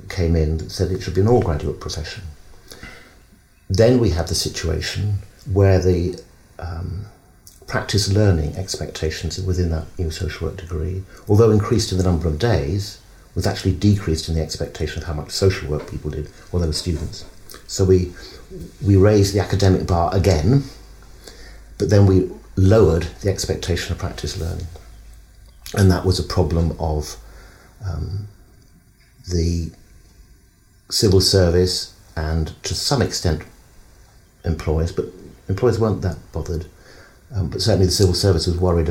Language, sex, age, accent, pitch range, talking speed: English, male, 50-69, British, 80-100 Hz, 150 wpm